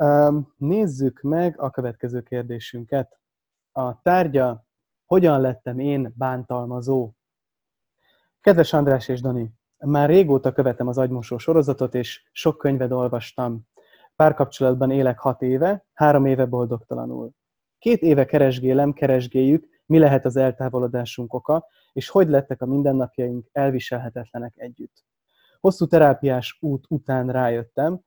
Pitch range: 125-150 Hz